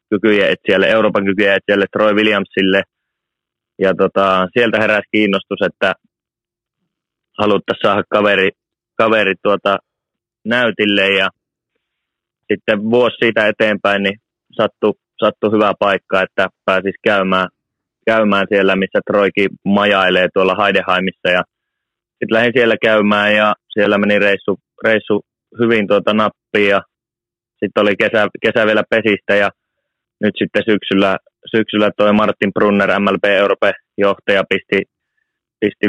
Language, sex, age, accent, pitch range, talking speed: Finnish, male, 20-39, native, 95-105 Hz, 120 wpm